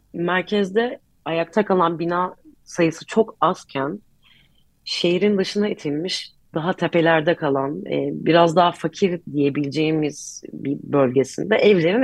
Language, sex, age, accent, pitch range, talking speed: Turkish, female, 30-49, native, 150-205 Hz, 100 wpm